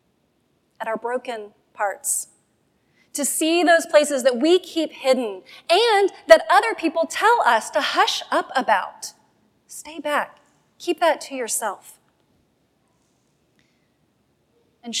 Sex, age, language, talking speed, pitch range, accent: female, 30-49, English, 115 wpm, 245-325 Hz, American